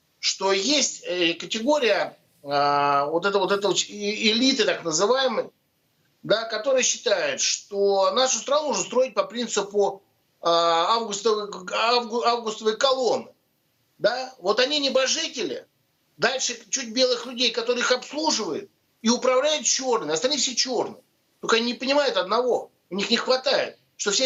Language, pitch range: Russian, 210-280 Hz